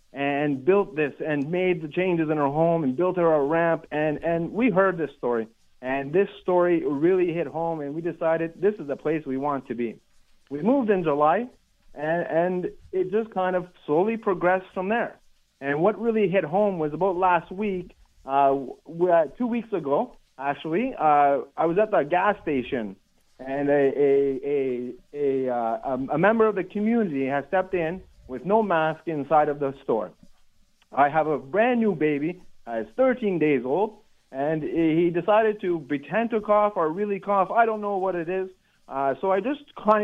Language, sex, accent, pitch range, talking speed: English, male, American, 145-195 Hz, 190 wpm